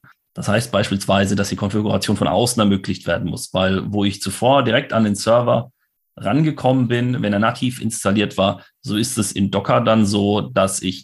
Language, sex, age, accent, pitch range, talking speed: German, male, 30-49, German, 95-110 Hz, 190 wpm